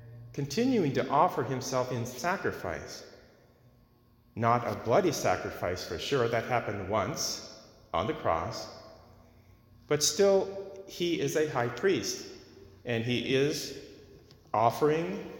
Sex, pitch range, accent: male, 105-130 Hz, American